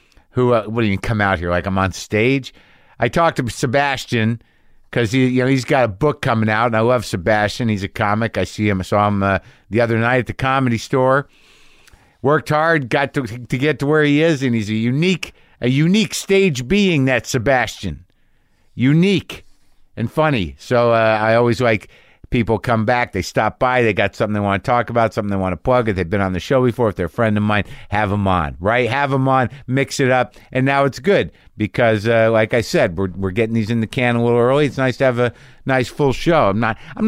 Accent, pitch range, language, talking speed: American, 110-140 Hz, English, 240 wpm